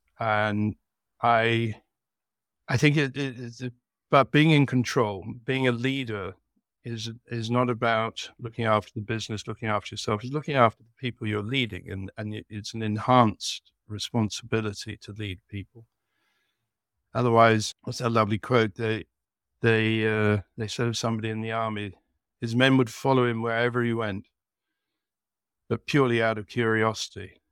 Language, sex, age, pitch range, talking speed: English, male, 60-79, 110-125 Hz, 150 wpm